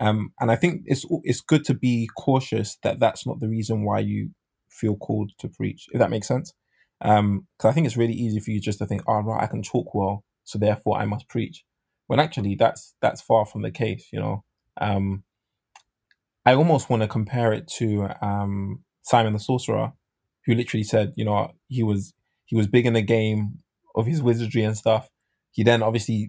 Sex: male